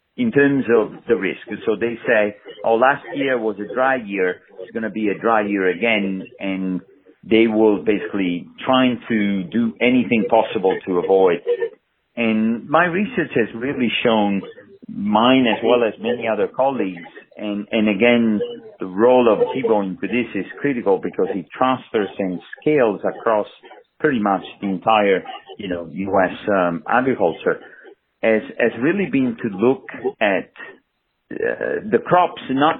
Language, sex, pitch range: English, male, 105-165 Hz